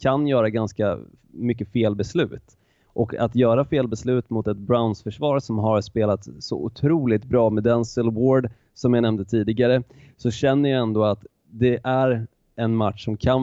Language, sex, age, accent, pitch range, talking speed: Swedish, male, 20-39, native, 105-125 Hz, 170 wpm